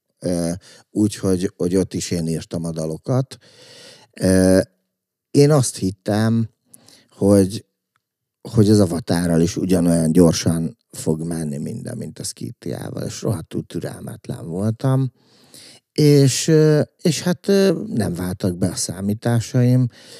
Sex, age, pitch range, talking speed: male, 50-69, 85-120 Hz, 105 wpm